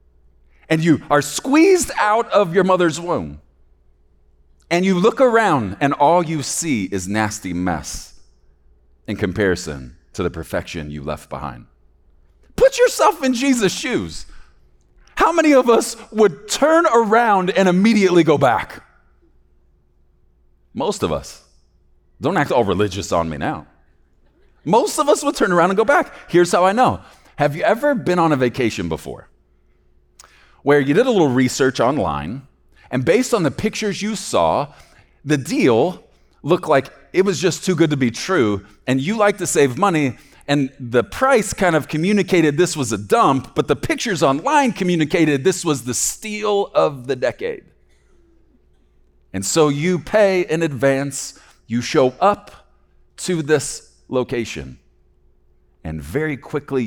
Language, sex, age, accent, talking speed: English, male, 40-59, American, 150 wpm